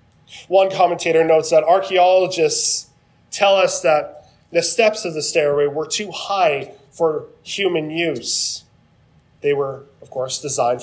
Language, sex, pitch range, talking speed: English, male, 140-180 Hz, 135 wpm